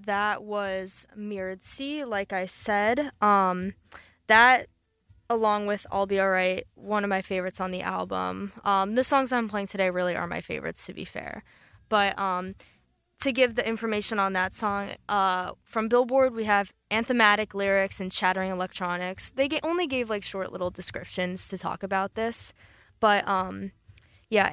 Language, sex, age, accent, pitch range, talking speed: English, female, 20-39, American, 185-225 Hz, 165 wpm